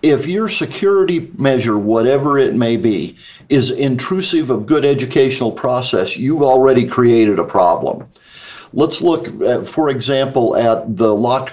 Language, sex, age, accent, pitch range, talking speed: English, male, 50-69, American, 110-140 Hz, 140 wpm